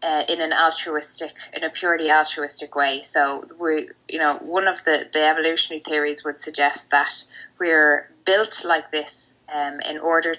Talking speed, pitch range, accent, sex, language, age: 170 wpm, 145-160 Hz, Irish, female, English, 20-39